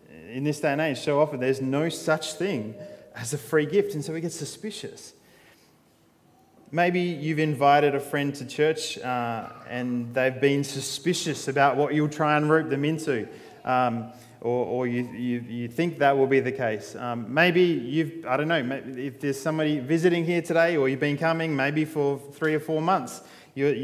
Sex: male